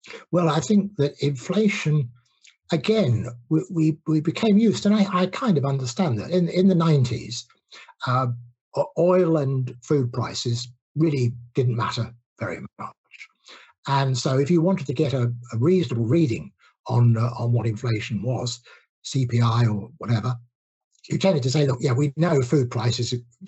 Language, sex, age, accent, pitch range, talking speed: English, male, 60-79, British, 120-160 Hz, 160 wpm